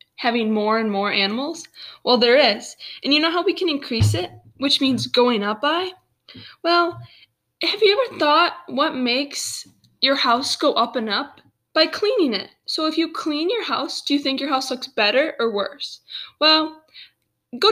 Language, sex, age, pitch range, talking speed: English, female, 10-29, 250-345 Hz, 185 wpm